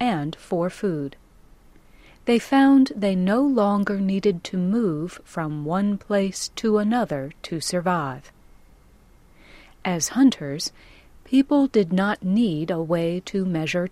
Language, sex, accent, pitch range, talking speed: English, female, American, 165-210 Hz, 120 wpm